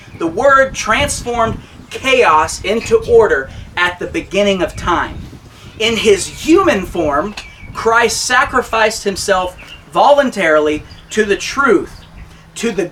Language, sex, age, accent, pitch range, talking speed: English, male, 30-49, American, 165-245 Hz, 110 wpm